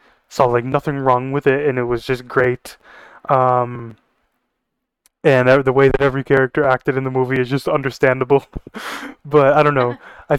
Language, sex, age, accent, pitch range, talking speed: English, male, 20-39, American, 130-155 Hz, 175 wpm